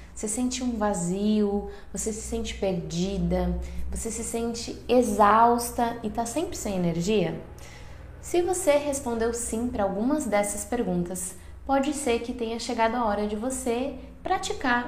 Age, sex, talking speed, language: 10-29, female, 140 wpm, Portuguese